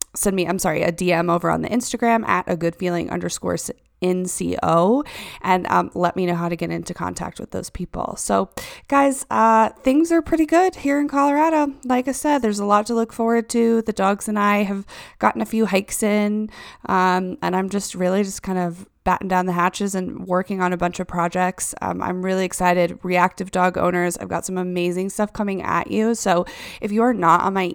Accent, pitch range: American, 180-220 Hz